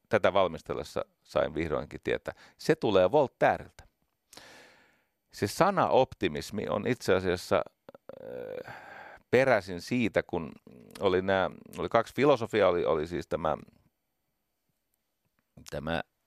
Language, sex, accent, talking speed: Finnish, male, native, 105 wpm